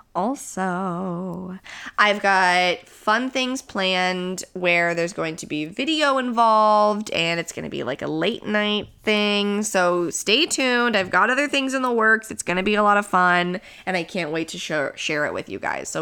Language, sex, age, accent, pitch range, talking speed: English, female, 20-39, American, 170-210 Hz, 195 wpm